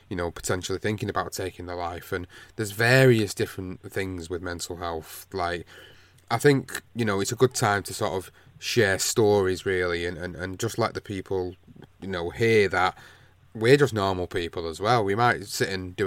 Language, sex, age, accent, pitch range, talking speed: English, male, 30-49, British, 90-105 Hz, 200 wpm